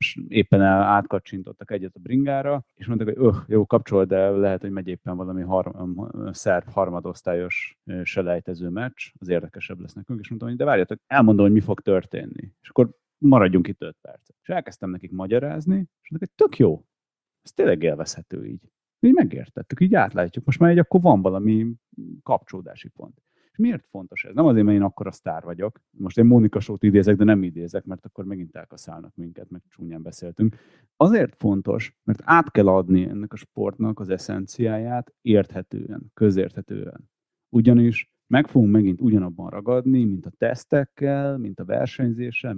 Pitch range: 95-125 Hz